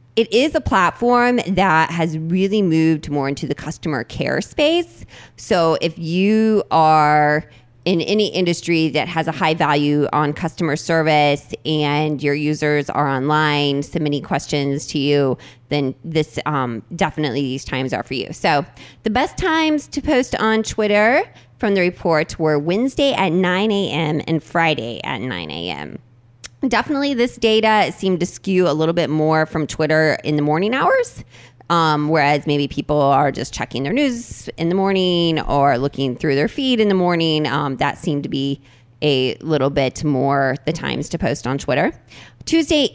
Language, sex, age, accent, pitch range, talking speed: English, female, 20-39, American, 140-195 Hz, 170 wpm